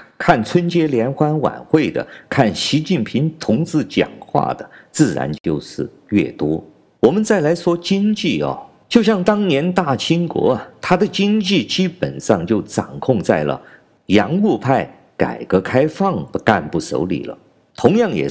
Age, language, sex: 50-69, Chinese, male